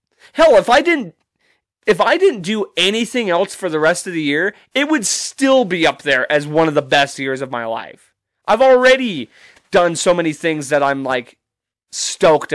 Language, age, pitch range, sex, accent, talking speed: English, 30-49, 140-200 Hz, male, American, 195 wpm